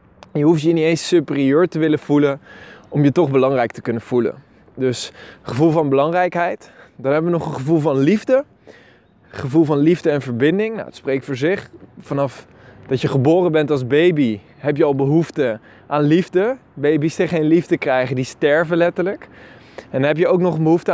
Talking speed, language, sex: 185 wpm, Dutch, male